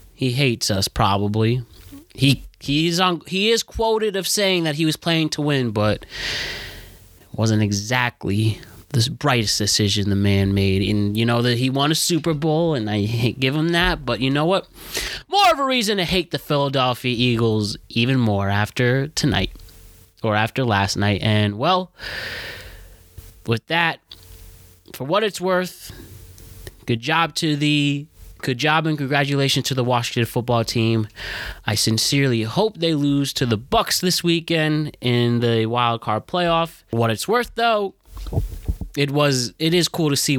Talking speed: 160 wpm